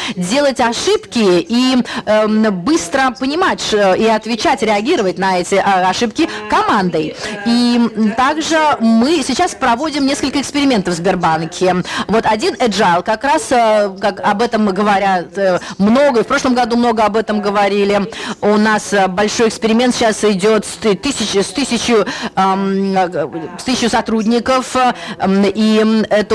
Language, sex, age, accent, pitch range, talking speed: Russian, female, 20-39, native, 200-245 Hz, 120 wpm